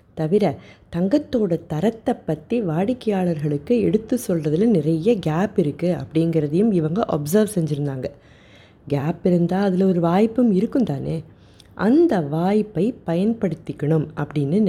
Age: 30-49